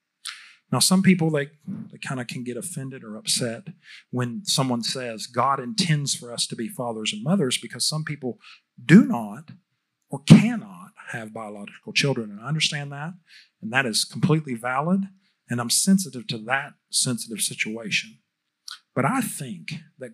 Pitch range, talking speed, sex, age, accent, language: 125-185 Hz, 160 wpm, male, 40-59, American, English